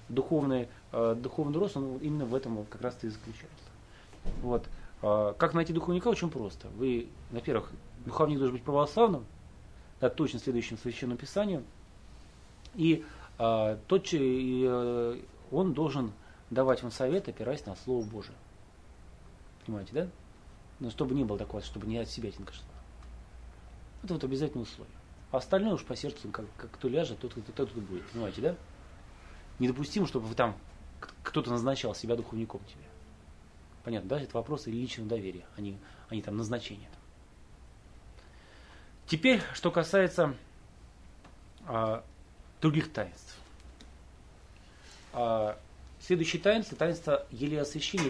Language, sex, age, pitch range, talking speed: Russian, male, 30-49, 95-140 Hz, 140 wpm